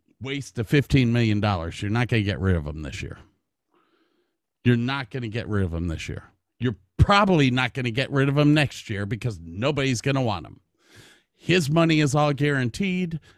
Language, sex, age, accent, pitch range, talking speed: English, male, 50-69, American, 105-155 Hz, 205 wpm